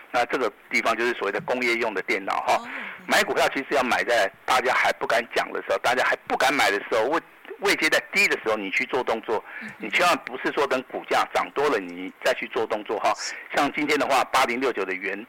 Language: Chinese